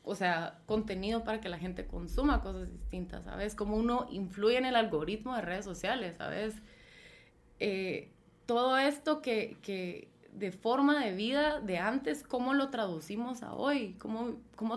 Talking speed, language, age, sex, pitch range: 160 wpm, Spanish, 20-39, female, 185-235 Hz